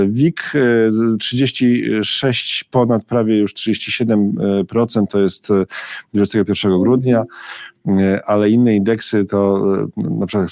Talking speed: 95 wpm